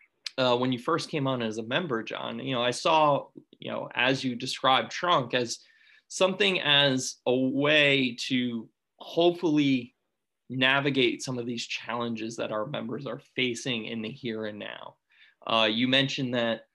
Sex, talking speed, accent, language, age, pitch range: male, 165 wpm, American, English, 20-39, 115-135 Hz